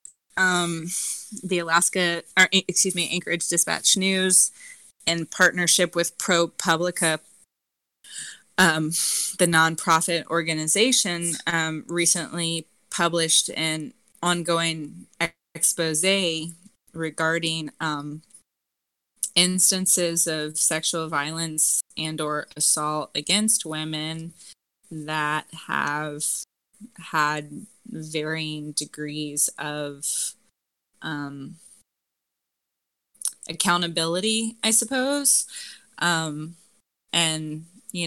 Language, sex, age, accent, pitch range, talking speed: English, female, 20-39, American, 150-180 Hz, 75 wpm